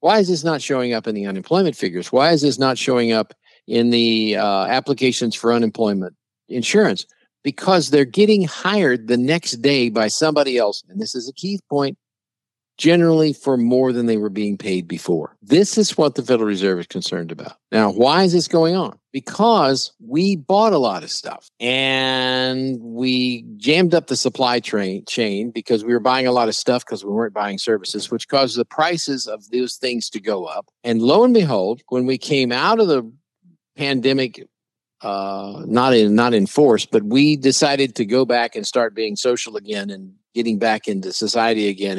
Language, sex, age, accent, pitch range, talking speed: English, male, 50-69, American, 110-145 Hz, 190 wpm